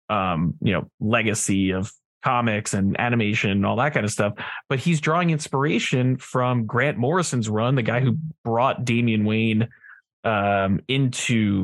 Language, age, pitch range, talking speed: English, 20-39, 110-145 Hz, 155 wpm